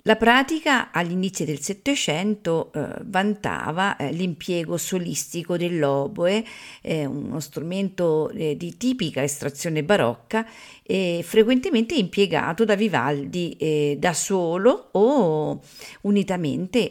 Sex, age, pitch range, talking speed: female, 50-69, 150-205 Hz, 95 wpm